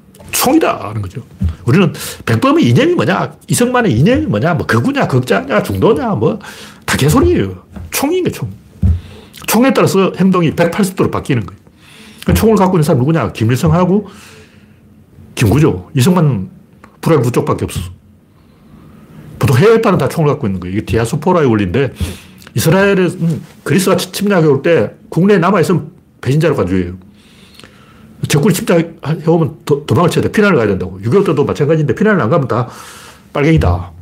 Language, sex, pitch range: Korean, male, 105-165 Hz